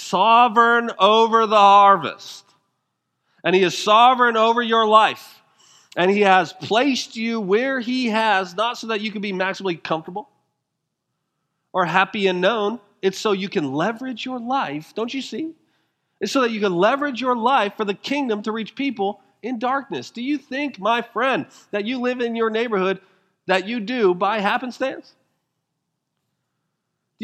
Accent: American